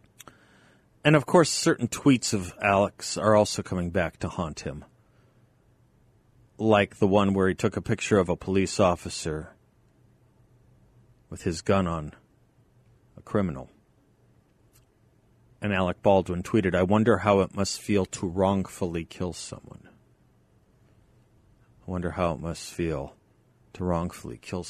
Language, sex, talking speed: English, male, 135 wpm